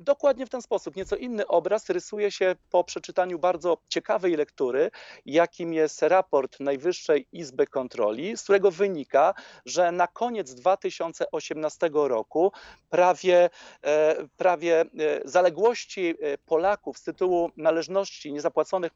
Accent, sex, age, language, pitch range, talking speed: native, male, 40-59, Polish, 160-200 Hz, 115 wpm